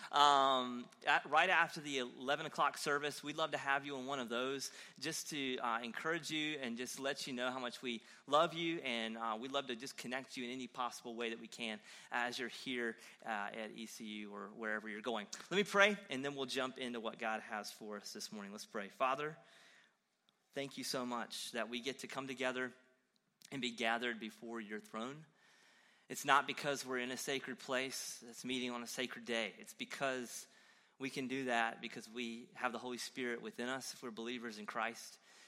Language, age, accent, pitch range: English, 30-49, American, 115-135 Hz